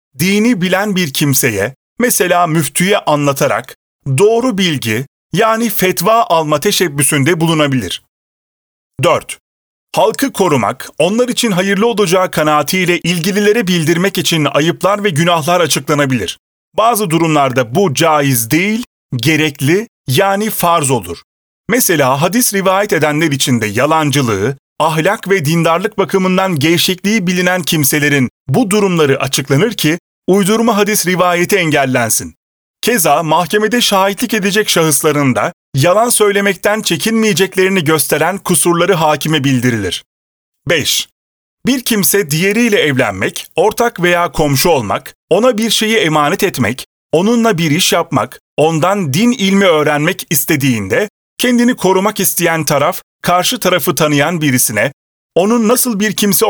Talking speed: 115 wpm